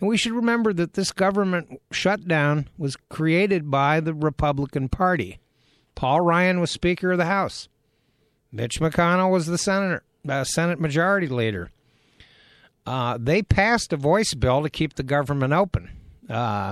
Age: 60-79